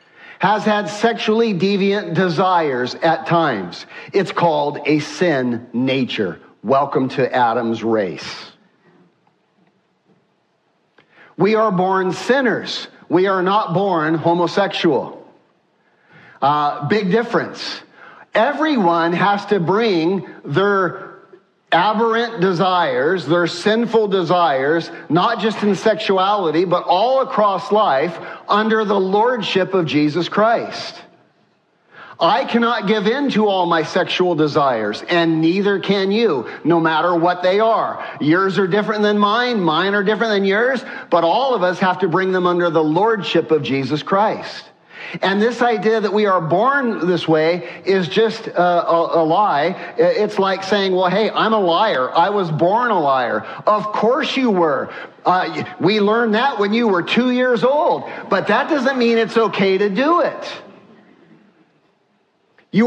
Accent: American